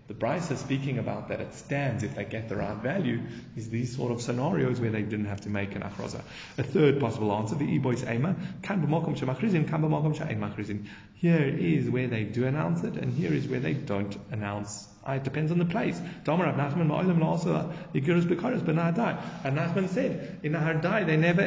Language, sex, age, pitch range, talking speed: English, male, 30-49, 115-155 Hz, 165 wpm